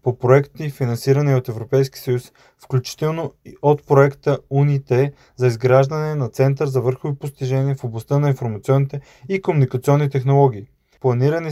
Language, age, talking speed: Bulgarian, 20-39, 140 wpm